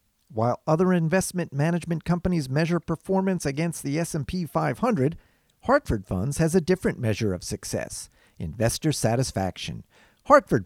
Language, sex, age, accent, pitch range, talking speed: English, male, 50-69, American, 115-190 Hz, 125 wpm